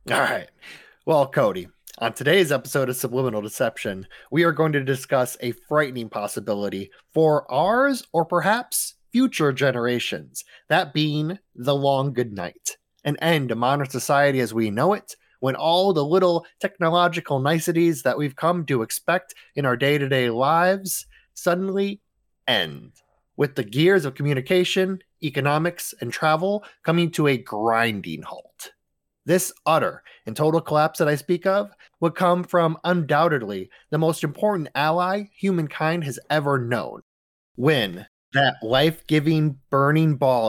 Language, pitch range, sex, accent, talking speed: English, 120-165 Hz, male, American, 140 wpm